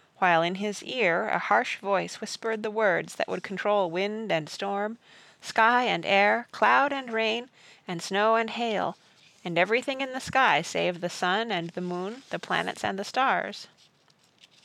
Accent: American